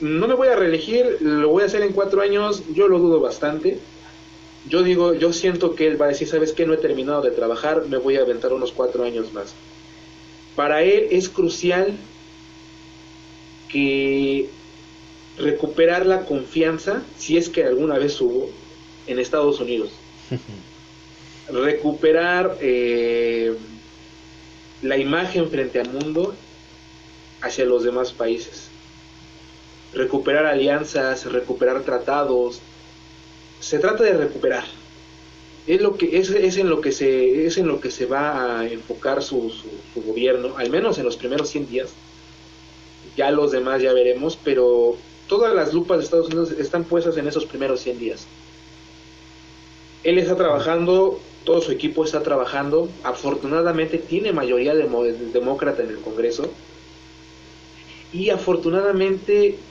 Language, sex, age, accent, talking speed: Spanish, male, 30-49, Mexican, 135 wpm